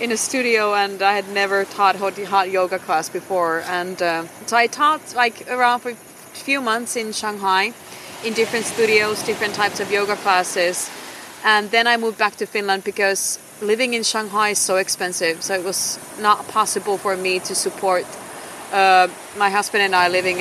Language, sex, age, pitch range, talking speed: English, female, 30-49, 180-215 Hz, 180 wpm